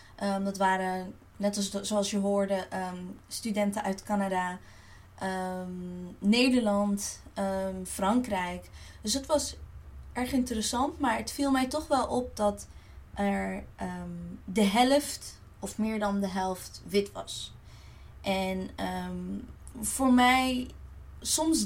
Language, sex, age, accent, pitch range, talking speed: Dutch, female, 20-39, Dutch, 180-235 Hz, 125 wpm